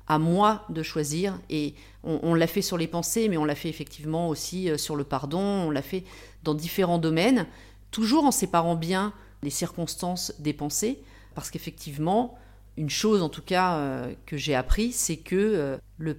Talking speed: 185 wpm